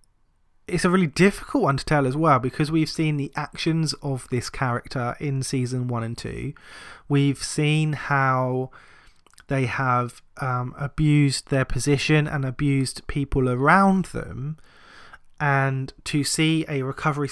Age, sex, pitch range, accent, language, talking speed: 20-39, male, 130-155 Hz, British, English, 140 wpm